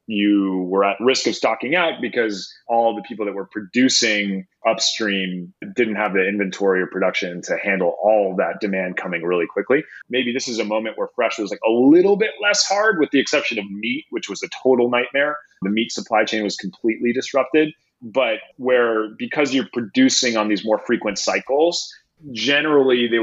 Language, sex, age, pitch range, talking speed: English, male, 30-49, 105-130 Hz, 185 wpm